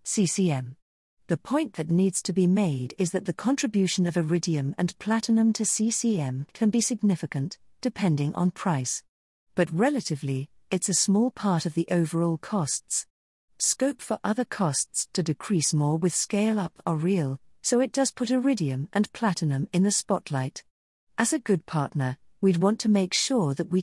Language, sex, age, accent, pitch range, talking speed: English, female, 50-69, British, 160-215 Hz, 165 wpm